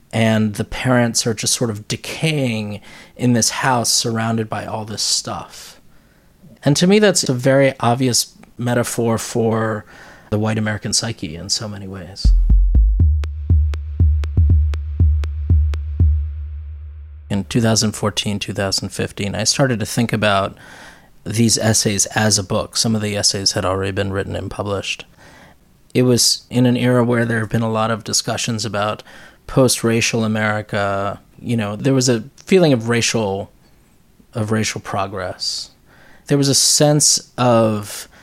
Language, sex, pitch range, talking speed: English, male, 100-120 Hz, 135 wpm